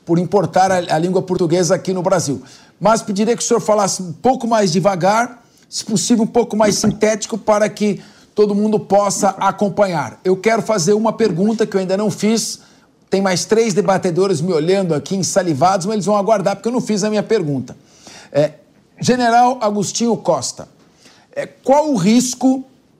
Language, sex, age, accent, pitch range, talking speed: Portuguese, male, 50-69, Brazilian, 190-225 Hz, 170 wpm